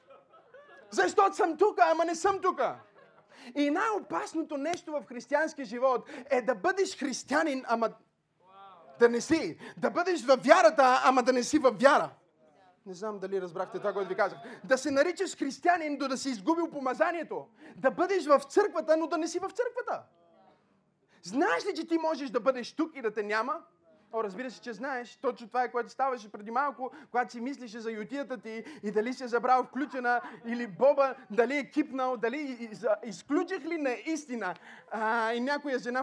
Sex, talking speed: male, 180 wpm